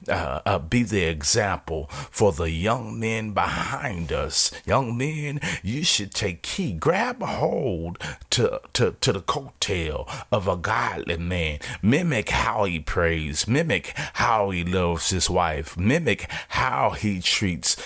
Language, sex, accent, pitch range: English, male, American, 80-100 Hz